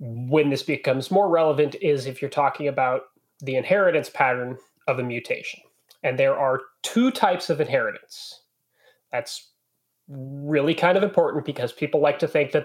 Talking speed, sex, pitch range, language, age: 160 wpm, male, 140-195 Hz, English, 30-49